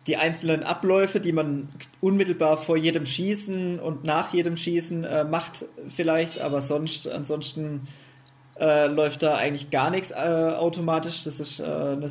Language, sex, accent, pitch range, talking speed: German, male, German, 145-170 Hz, 150 wpm